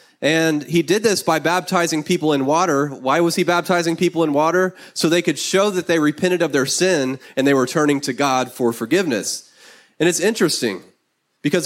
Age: 20-39